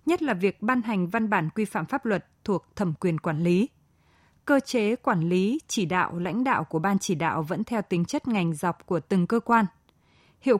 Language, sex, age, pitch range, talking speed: Vietnamese, female, 20-39, 185-235 Hz, 220 wpm